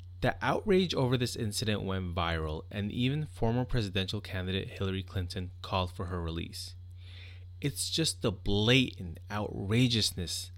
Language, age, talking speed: English, 20-39, 130 wpm